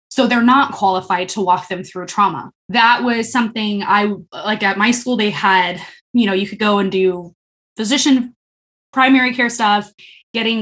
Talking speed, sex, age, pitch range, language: 175 wpm, female, 20-39, 195-250 Hz, English